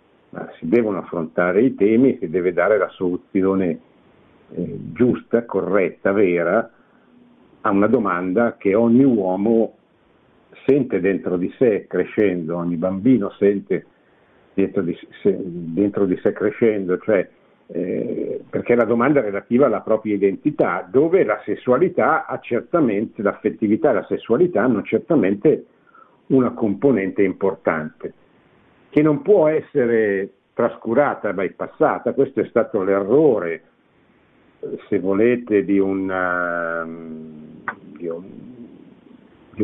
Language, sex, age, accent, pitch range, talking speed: Italian, male, 60-79, native, 90-115 Hz, 110 wpm